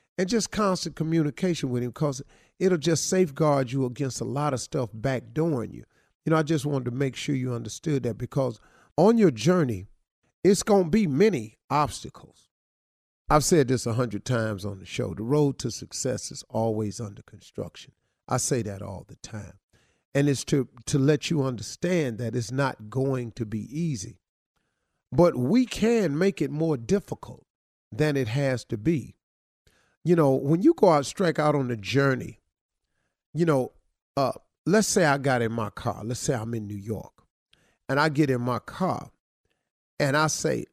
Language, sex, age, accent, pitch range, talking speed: English, male, 50-69, American, 120-160 Hz, 180 wpm